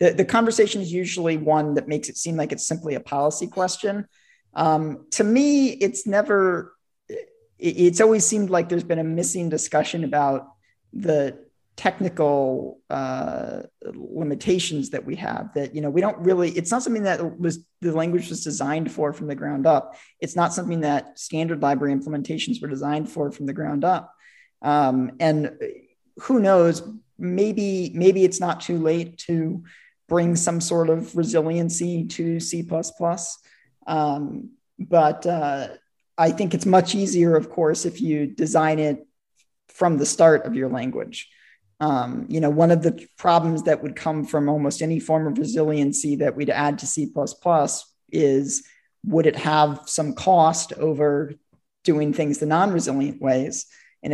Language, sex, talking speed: English, male, 160 wpm